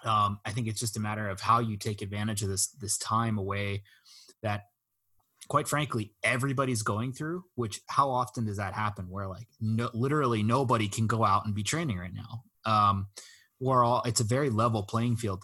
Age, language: 20-39, English